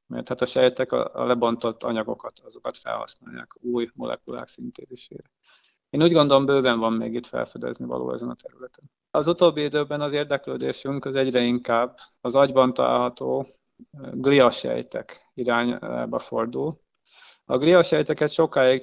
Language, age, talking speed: Hungarian, 30-49, 130 wpm